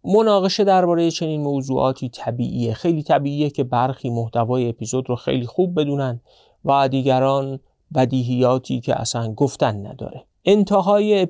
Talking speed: 120 wpm